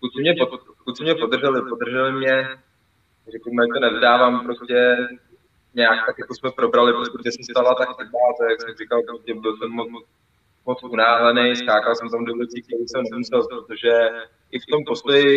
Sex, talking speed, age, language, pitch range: male, 180 wpm, 20-39, Czech, 115-130 Hz